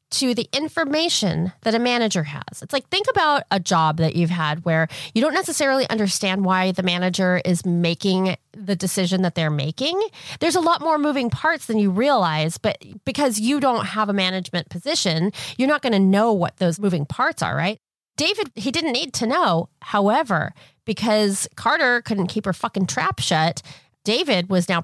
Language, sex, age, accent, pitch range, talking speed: English, female, 30-49, American, 175-235 Hz, 185 wpm